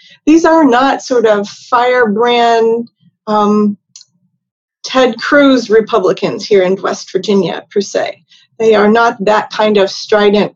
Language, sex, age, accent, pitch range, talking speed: English, female, 40-59, American, 205-245 Hz, 125 wpm